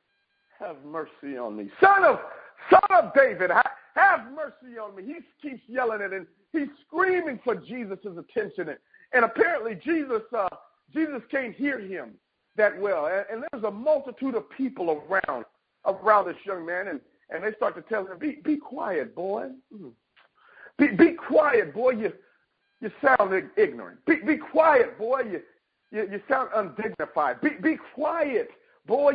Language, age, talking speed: English, 50-69, 165 wpm